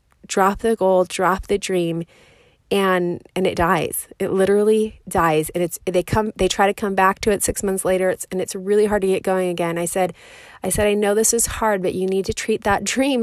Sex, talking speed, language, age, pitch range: female, 235 wpm, English, 30-49, 190-230 Hz